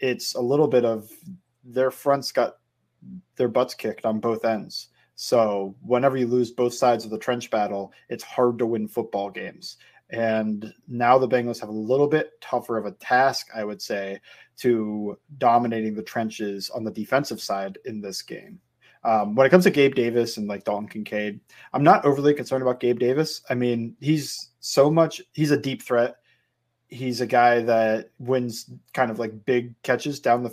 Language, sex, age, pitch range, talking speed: English, male, 20-39, 110-135 Hz, 185 wpm